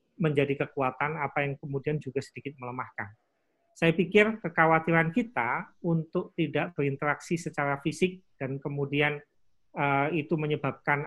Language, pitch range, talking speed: Malay, 145-185 Hz, 120 wpm